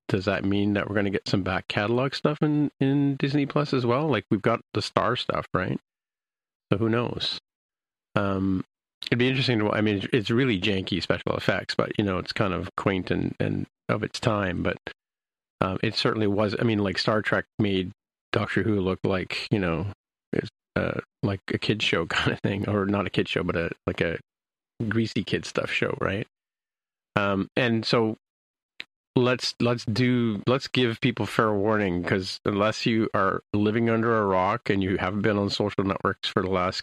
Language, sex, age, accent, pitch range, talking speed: English, male, 40-59, American, 95-115 Hz, 195 wpm